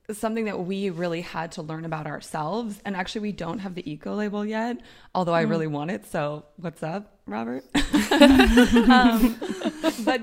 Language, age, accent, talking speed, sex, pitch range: Dutch, 20-39, American, 170 wpm, female, 170-220 Hz